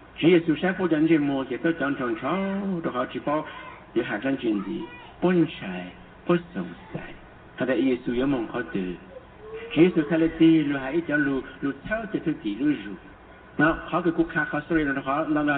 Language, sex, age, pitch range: English, male, 60-79, 155-205 Hz